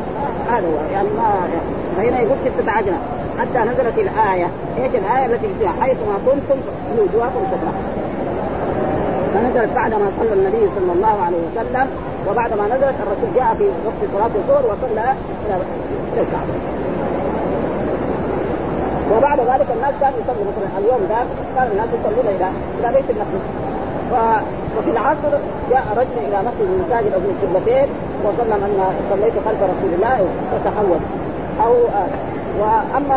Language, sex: Arabic, female